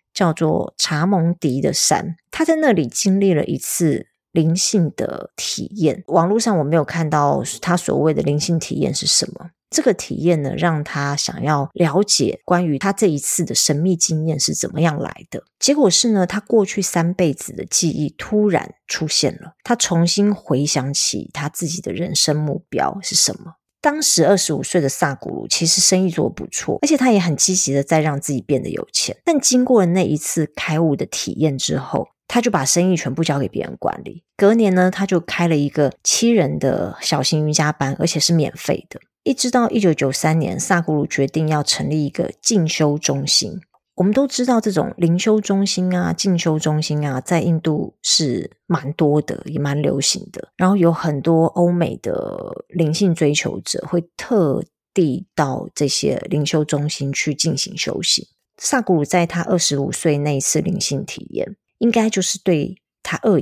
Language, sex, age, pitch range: Chinese, female, 30-49, 150-195 Hz